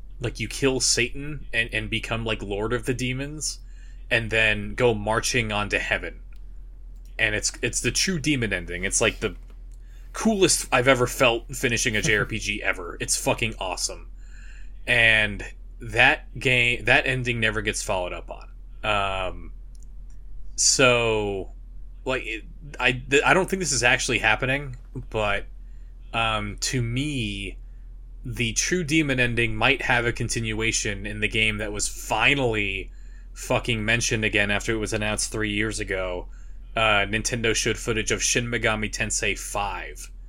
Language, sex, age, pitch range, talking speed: English, male, 20-39, 105-125 Hz, 145 wpm